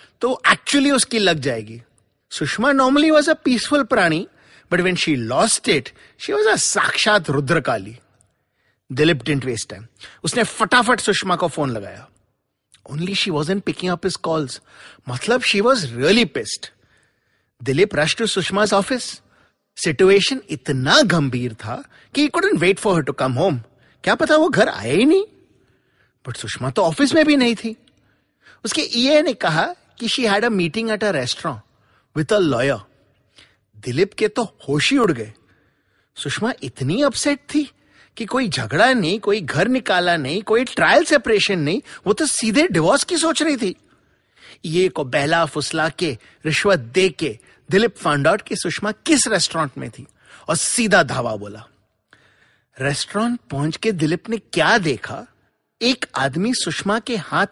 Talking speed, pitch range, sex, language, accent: 140 wpm, 145-240 Hz, male, English, Indian